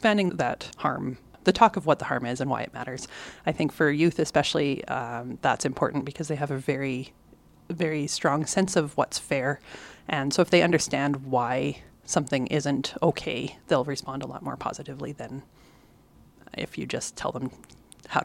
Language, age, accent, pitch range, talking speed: English, 30-49, American, 140-185 Hz, 180 wpm